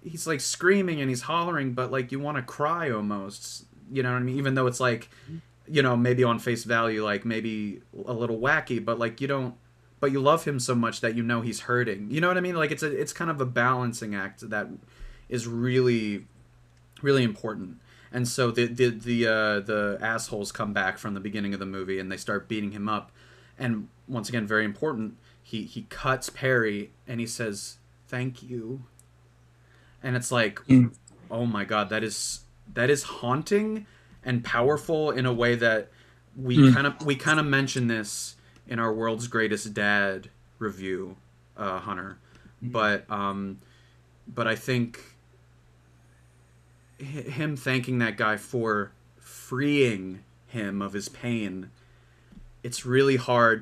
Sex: male